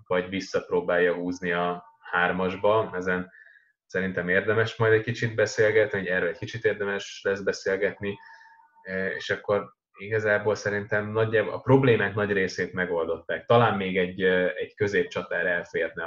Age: 20-39